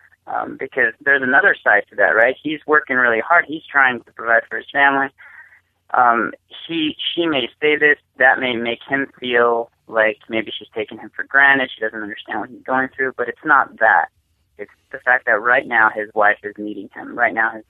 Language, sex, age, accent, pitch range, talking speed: English, male, 30-49, American, 105-130 Hz, 210 wpm